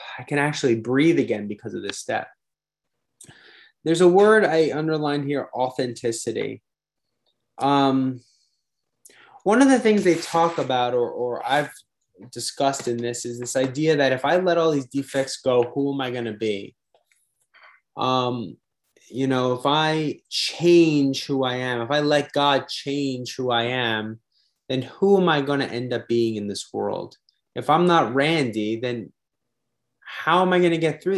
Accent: American